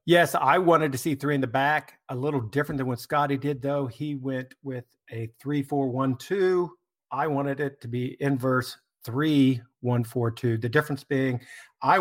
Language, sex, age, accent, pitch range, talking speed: English, male, 50-69, American, 125-145 Hz, 195 wpm